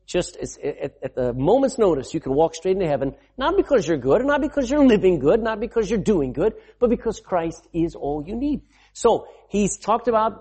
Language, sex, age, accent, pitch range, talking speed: English, male, 50-69, American, 150-225 Hz, 220 wpm